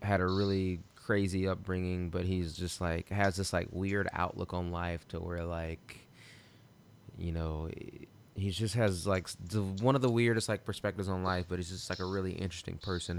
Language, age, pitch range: English, 20-39, 85-100 Hz